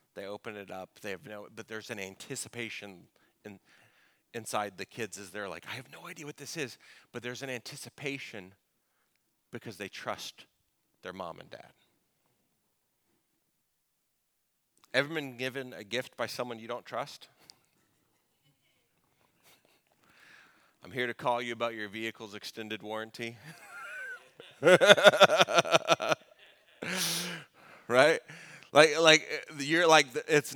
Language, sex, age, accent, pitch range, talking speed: English, male, 40-59, American, 105-140 Hz, 120 wpm